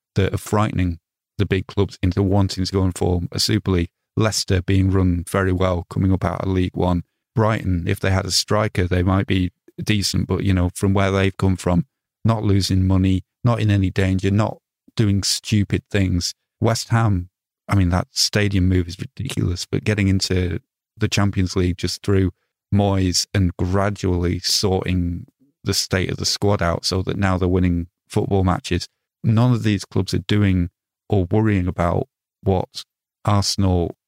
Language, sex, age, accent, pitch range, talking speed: English, male, 30-49, British, 95-110 Hz, 175 wpm